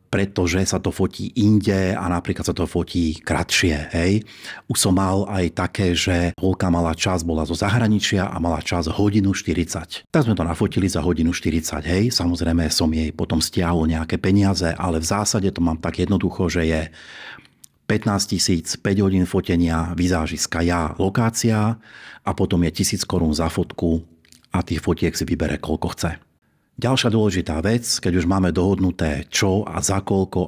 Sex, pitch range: male, 85-100 Hz